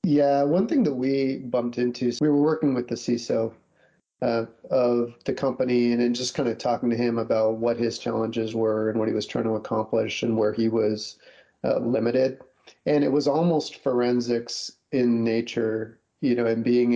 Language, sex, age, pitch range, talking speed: English, male, 40-59, 115-130 Hz, 190 wpm